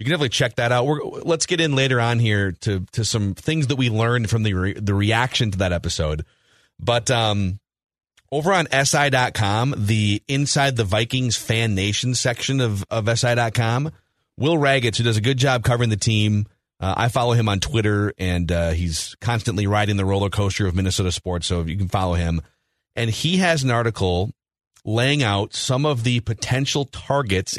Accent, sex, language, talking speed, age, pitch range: American, male, English, 190 wpm, 30-49, 100-130 Hz